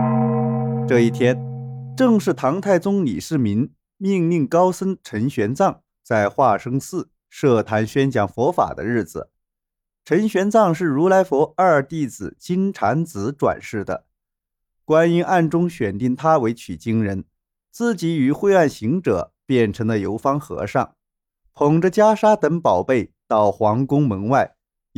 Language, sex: Chinese, male